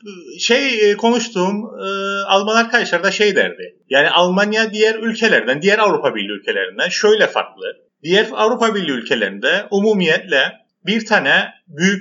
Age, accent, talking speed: 40-59, native, 120 wpm